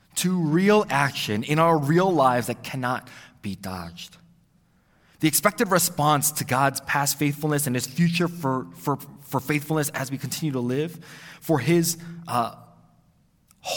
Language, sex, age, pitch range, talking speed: English, male, 20-39, 110-150 Hz, 145 wpm